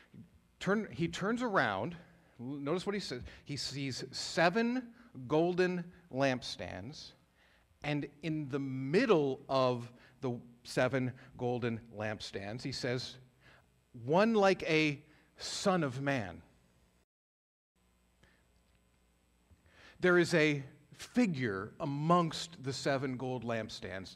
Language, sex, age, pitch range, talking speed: English, male, 50-69, 115-160 Hz, 95 wpm